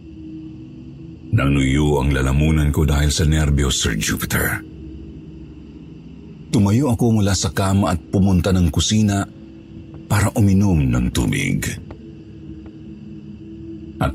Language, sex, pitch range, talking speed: Filipino, male, 70-90 Hz, 100 wpm